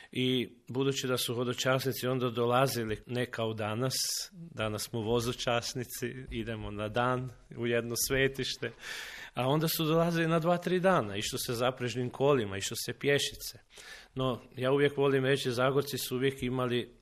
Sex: male